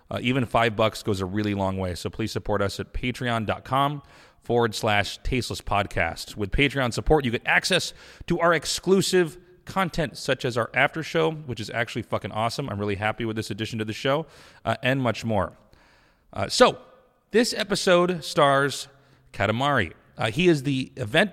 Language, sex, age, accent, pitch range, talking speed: English, male, 30-49, American, 110-140 Hz, 175 wpm